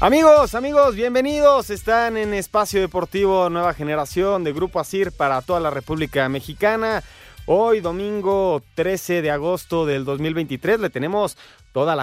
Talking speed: 140 wpm